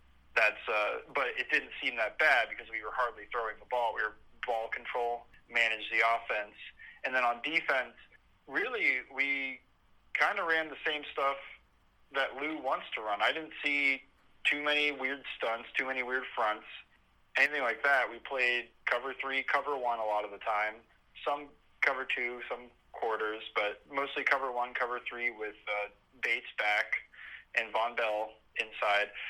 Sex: male